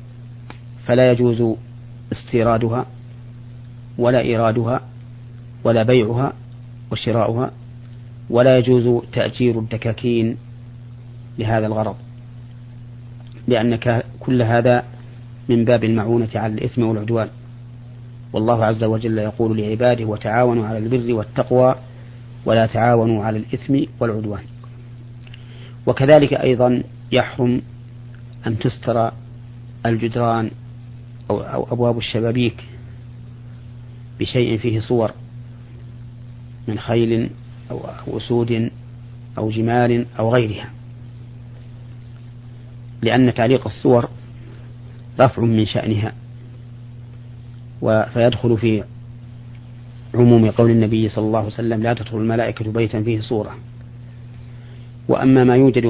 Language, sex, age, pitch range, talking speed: Arabic, male, 40-59, 115-120 Hz, 85 wpm